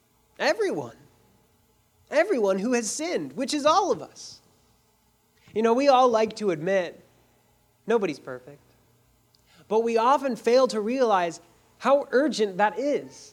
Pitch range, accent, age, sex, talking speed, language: 170-245 Hz, American, 30-49, male, 130 wpm, English